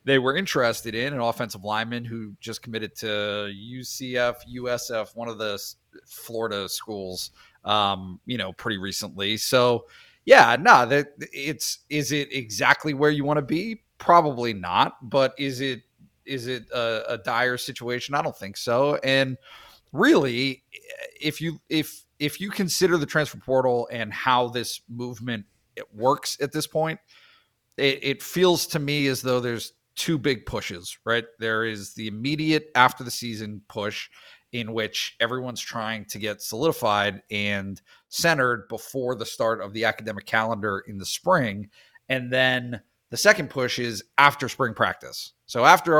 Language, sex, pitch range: English, male, 110-140 Hz